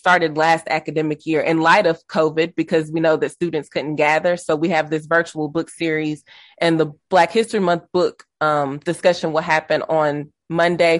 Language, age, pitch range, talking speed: English, 20-39, 155-175 Hz, 185 wpm